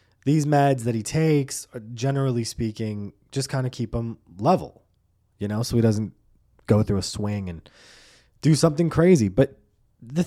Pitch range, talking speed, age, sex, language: 105-135 Hz, 165 wpm, 20-39, male, English